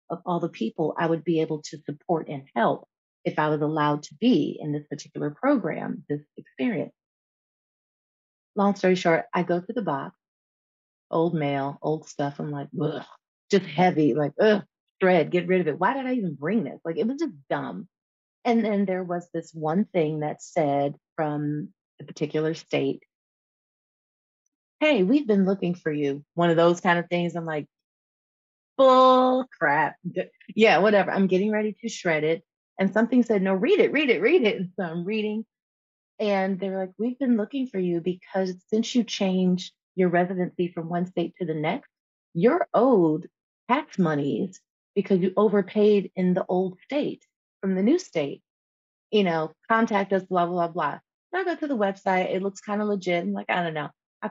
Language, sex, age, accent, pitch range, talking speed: English, female, 30-49, American, 165-215 Hz, 185 wpm